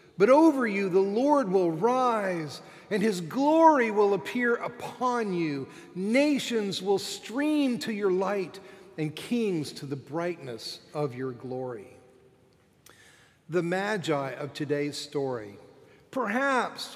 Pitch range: 145-200 Hz